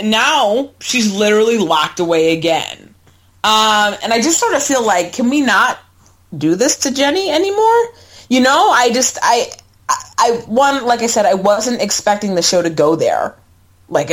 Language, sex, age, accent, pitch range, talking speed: English, female, 30-49, American, 155-235 Hz, 175 wpm